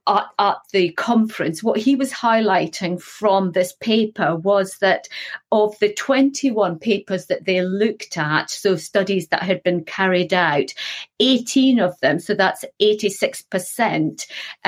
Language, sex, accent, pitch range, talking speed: English, female, British, 175-220 Hz, 140 wpm